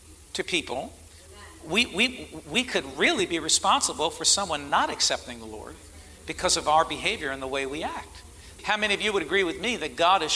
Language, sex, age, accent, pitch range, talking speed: English, male, 50-69, American, 130-175 Hz, 205 wpm